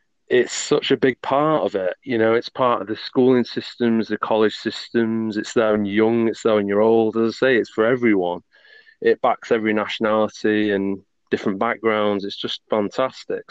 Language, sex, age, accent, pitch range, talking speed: English, male, 30-49, British, 105-130 Hz, 195 wpm